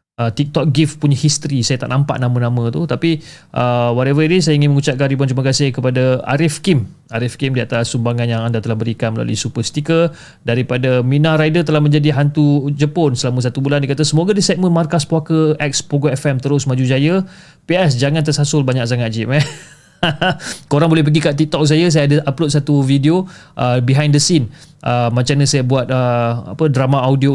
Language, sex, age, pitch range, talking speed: Malay, male, 30-49, 125-150 Hz, 190 wpm